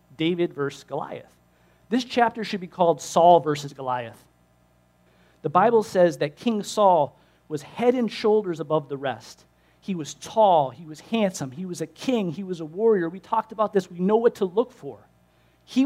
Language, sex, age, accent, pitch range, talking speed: English, male, 40-59, American, 130-195 Hz, 185 wpm